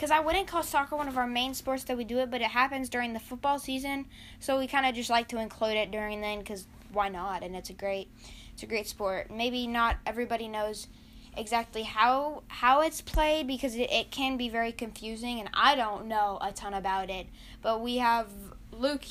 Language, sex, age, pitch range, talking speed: English, female, 10-29, 220-280 Hz, 225 wpm